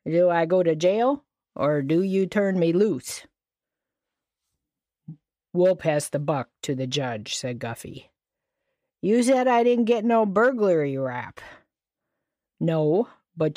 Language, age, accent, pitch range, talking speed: English, 40-59, American, 145-185 Hz, 135 wpm